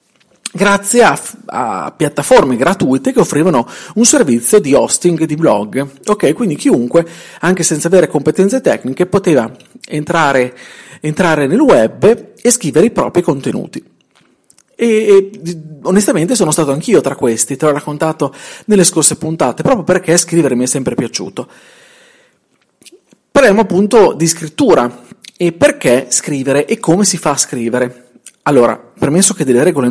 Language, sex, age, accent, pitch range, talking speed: Italian, male, 40-59, native, 140-195 Hz, 140 wpm